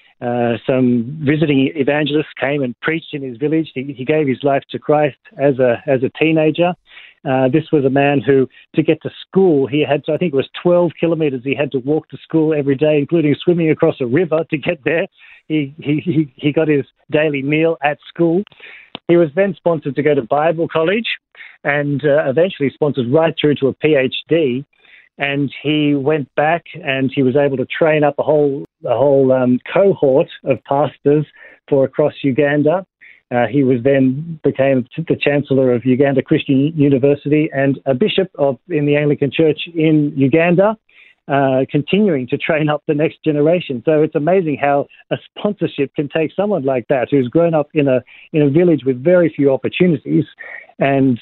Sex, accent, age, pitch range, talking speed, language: male, Australian, 40-59, 135-160 Hz, 185 wpm, English